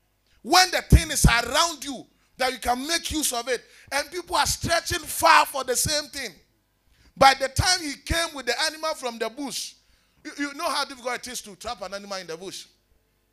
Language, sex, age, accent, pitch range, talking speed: English, male, 30-49, Nigerian, 180-280 Hz, 210 wpm